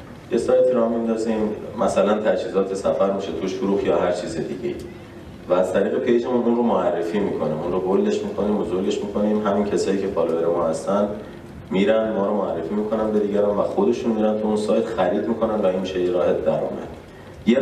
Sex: male